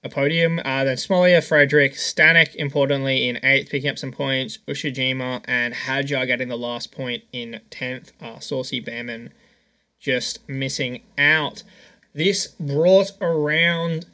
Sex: male